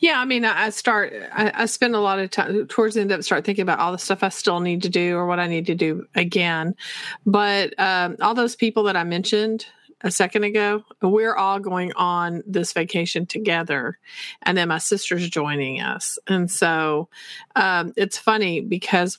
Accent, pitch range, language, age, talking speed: American, 170-220 Hz, English, 40-59, 195 wpm